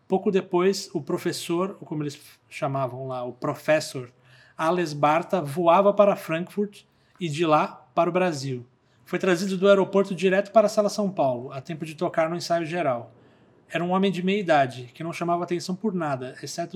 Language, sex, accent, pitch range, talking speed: Portuguese, male, Brazilian, 145-180 Hz, 185 wpm